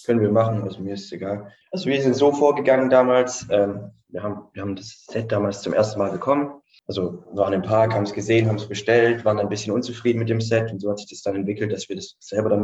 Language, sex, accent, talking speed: German, male, German, 255 wpm